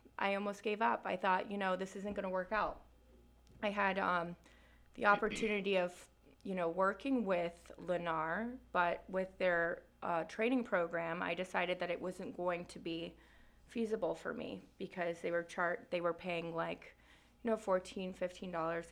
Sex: female